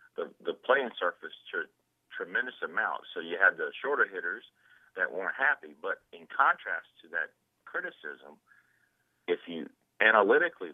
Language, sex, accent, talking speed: English, male, American, 145 wpm